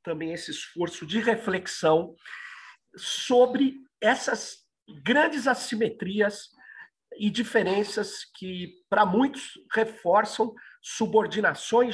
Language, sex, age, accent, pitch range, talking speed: Portuguese, male, 50-69, Brazilian, 175-225 Hz, 80 wpm